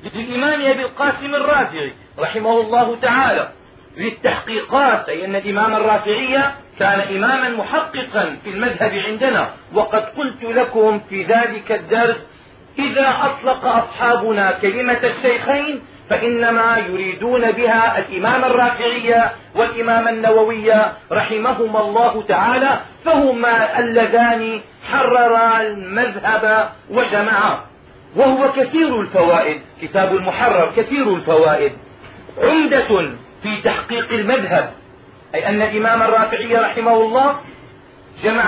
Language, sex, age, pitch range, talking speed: Arabic, male, 40-59, 215-255 Hz, 95 wpm